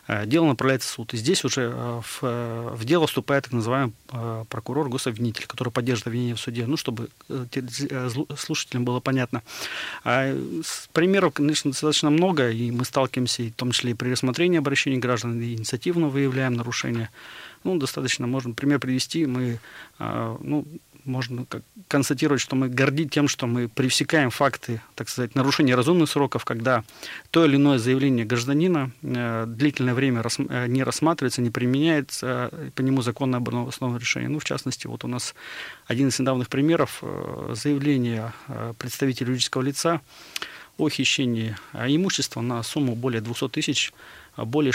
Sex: male